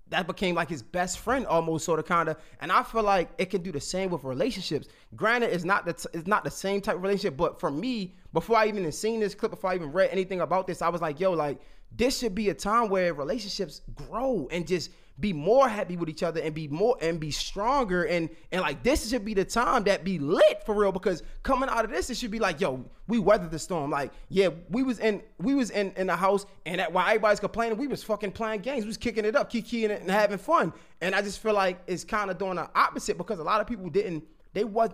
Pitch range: 175-230 Hz